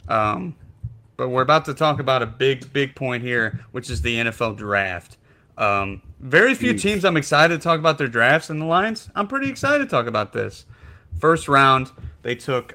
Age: 30-49